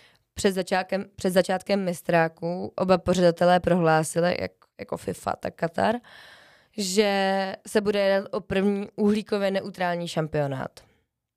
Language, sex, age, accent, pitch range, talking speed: Czech, female, 20-39, native, 170-200 Hz, 115 wpm